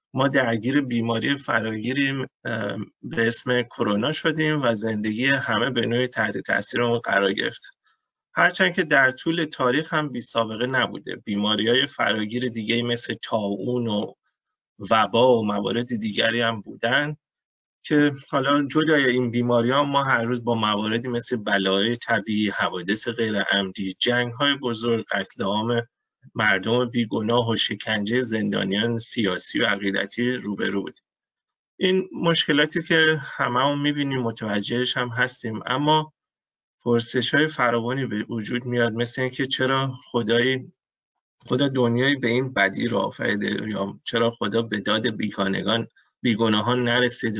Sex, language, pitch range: male, Persian, 110-135 Hz